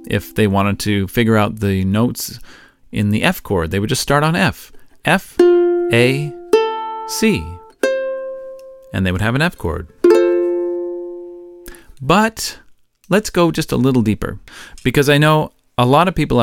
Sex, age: male, 40-59